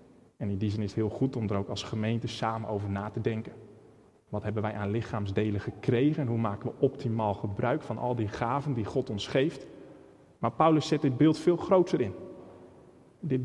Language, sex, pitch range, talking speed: Dutch, male, 115-150 Hz, 210 wpm